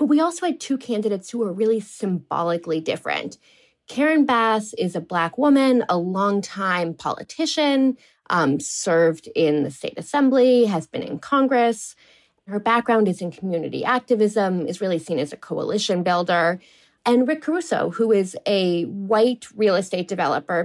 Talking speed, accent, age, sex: 155 wpm, American, 20-39, female